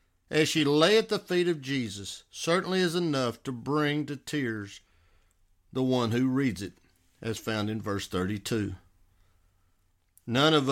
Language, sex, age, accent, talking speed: English, male, 60-79, American, 150 wpm